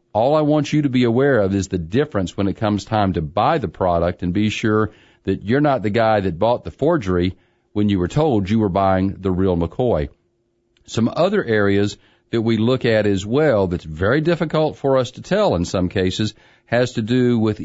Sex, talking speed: male, 220 wpm